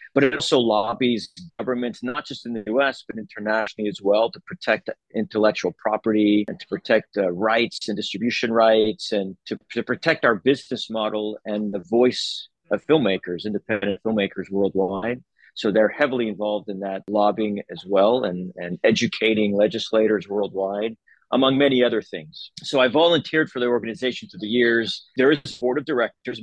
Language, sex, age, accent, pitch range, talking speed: English, male, 40-59, American, 105-120 Hz, 170 wpm